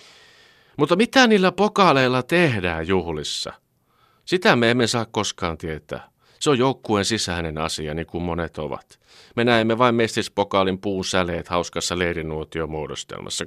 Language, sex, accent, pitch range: Finnish, male, native, 85-120 Hz